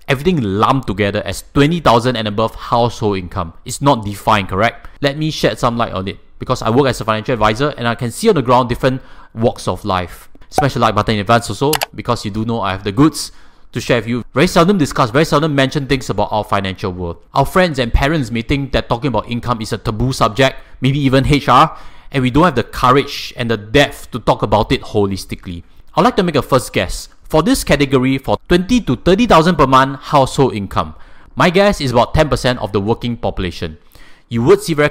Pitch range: 110-145 Hz